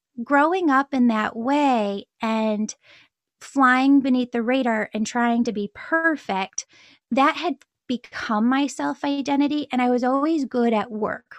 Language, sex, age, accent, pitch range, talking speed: English, female, 10-29, American, 220-275 Hz, 150 wpm